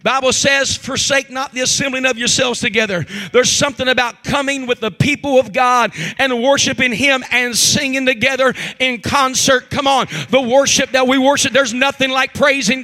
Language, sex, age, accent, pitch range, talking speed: English, male, 40-59, American, 215-275 Hz, 180 wpm